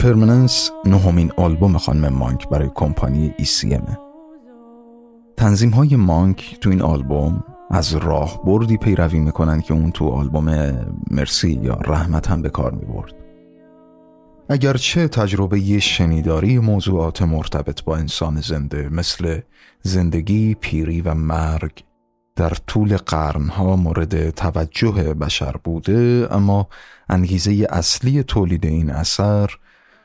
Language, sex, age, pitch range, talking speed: Persian, male, 30-49, 80-105 Hz, 110 wpm